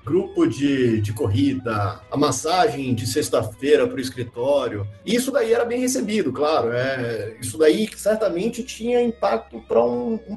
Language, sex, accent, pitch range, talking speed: Portuguese, male, Brazilian, 135-190 Hz, 155 wpm